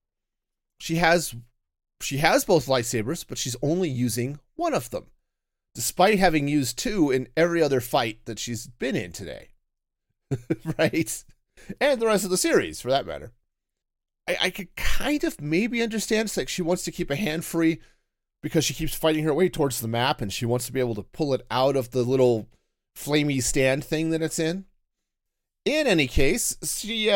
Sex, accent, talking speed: male, American, 185 wpm